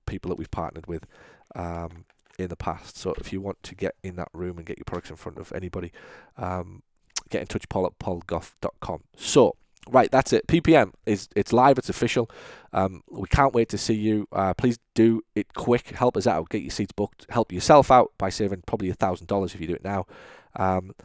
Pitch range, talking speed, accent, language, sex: 90-115 Hz, 220 wpm, British, English, male